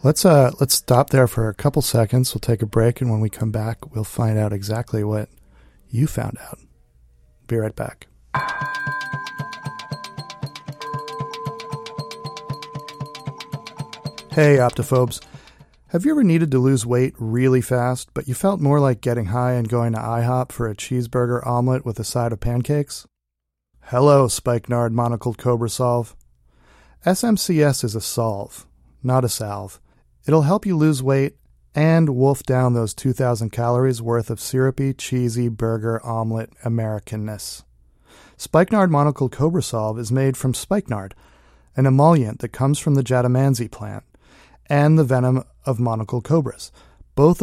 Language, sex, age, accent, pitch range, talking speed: English, male, 40-59, American, 115-145 Hz, 145 wpm